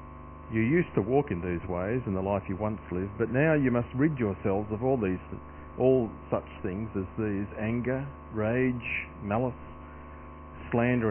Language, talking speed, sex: English, 165 wpm, male